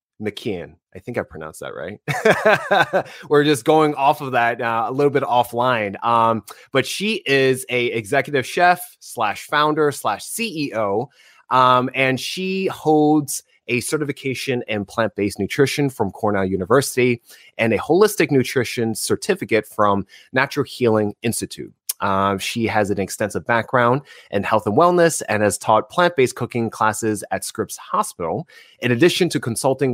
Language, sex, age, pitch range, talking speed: English, male, 20-39, 105-135 Hz, 145 wpm